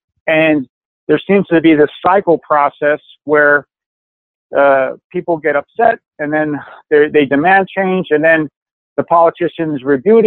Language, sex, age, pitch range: English, male, 40-59, 145-185 Hz